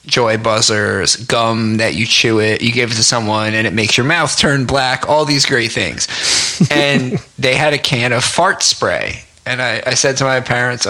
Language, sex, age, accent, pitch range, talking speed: English, male, 30-49, American, 115-145 Hz, 210 wpm